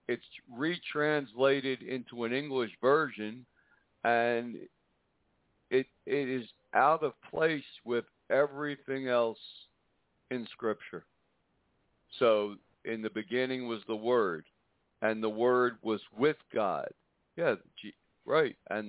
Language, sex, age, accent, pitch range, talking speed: English, male, 60-79, American, 115-140 Hz, 110 wpm